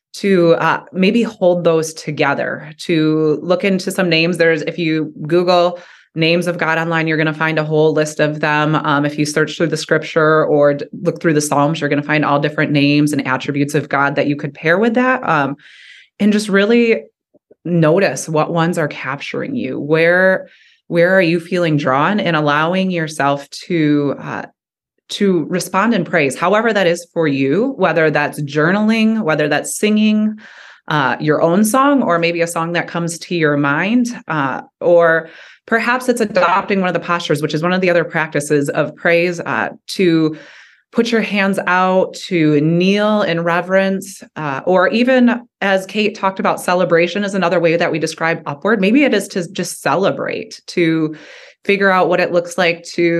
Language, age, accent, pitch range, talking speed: English, 20-39, American, 155-190 Hz, 185 wpm